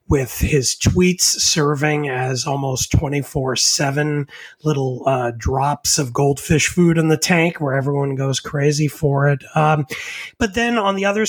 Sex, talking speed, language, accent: male, 150 wpm, English, American